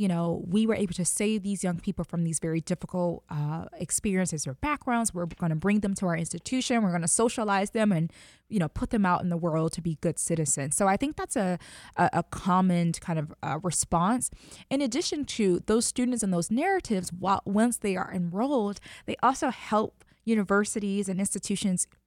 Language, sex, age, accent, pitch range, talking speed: English, female, 20-39, American, 180-230 Hz, 205 wpm